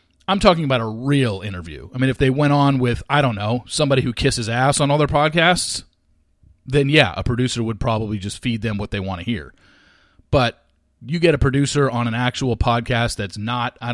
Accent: American